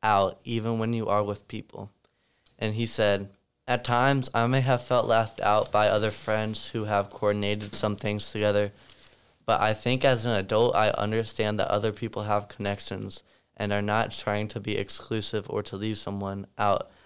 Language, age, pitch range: English, 20-39, 100-115 Hz